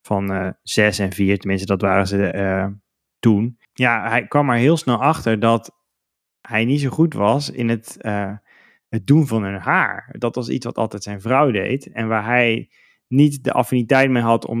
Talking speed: 200 wpm